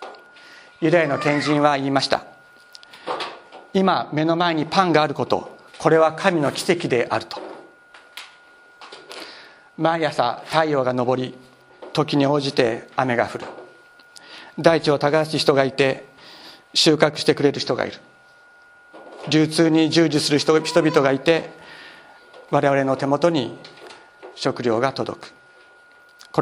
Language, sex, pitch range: Japanese, male, 145-175 Hz